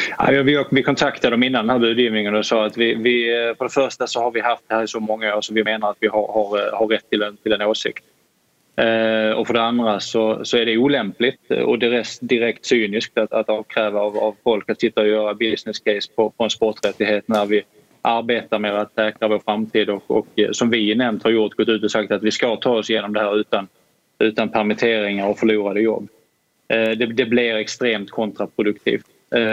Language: Swedish